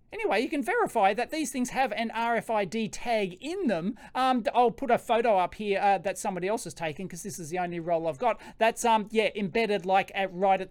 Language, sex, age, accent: English, male, 30-49, Australian